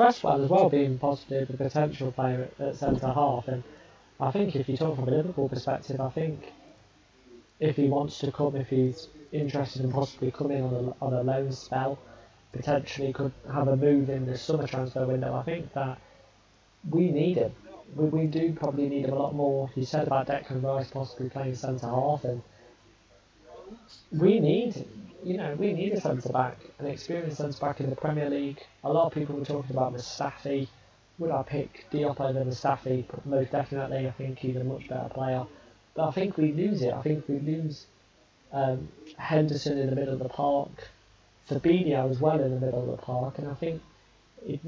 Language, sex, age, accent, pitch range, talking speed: English, male, 20-39, British, 130-150 Hz, 190 wpm